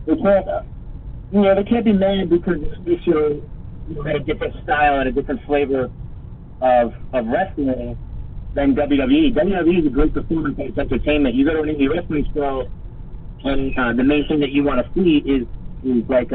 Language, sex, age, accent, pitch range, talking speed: English, male, 30-49, American, 120-165 Hz, 195 wpm